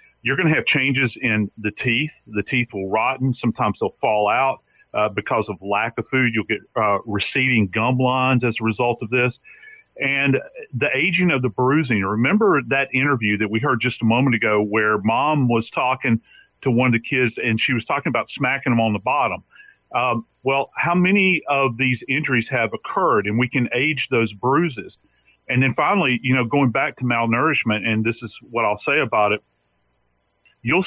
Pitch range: 115-145 Hz